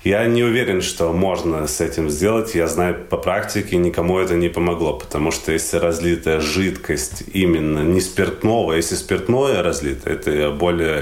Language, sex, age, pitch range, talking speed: Russian, male, 30-49, 80-95 Hz, 160 wpm